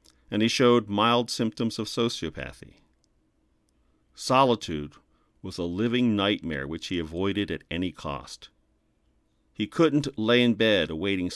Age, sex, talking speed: 40-59, male, 125 wpm